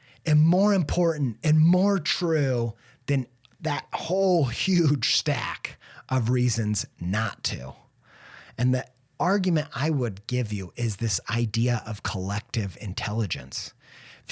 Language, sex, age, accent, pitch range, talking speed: English, male, 30-49, American, 120-170 Hz, 120 wpm